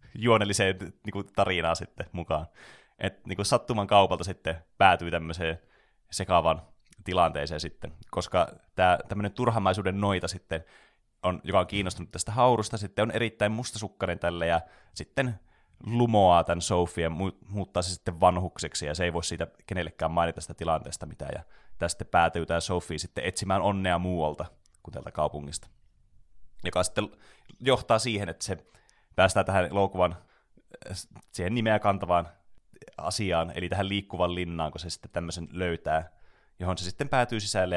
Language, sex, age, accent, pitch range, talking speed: Finnish, male, 20-39, native, 85-100 Hz, 145 wpm